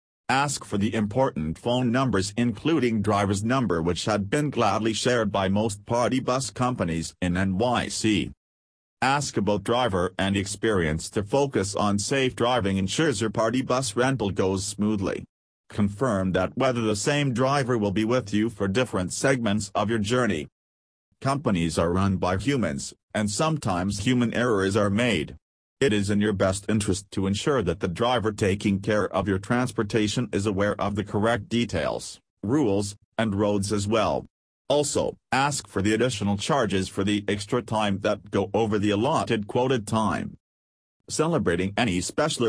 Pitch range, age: 95-120 Hz, 40-59